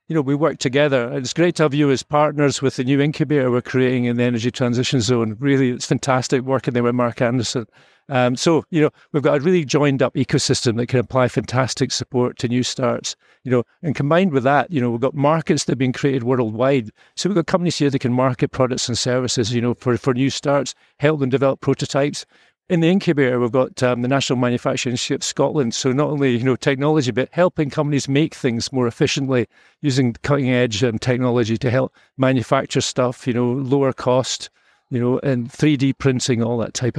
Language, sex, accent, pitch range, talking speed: English, male, British, 125-145 Hz, 215 wpm